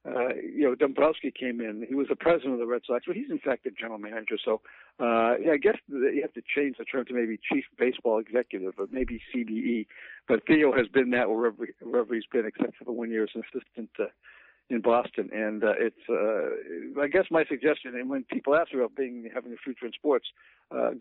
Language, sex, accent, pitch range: English, male, American, 120-170 Hz